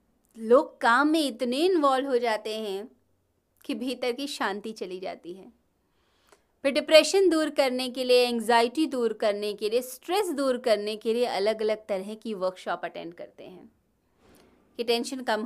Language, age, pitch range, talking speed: Hindi, 20-39, 205-270 Hz, 165 wpm